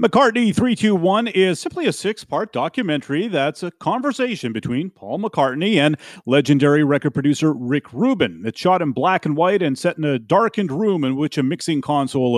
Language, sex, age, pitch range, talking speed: English, male, 40-59, 130-180 Hz, 175 wpm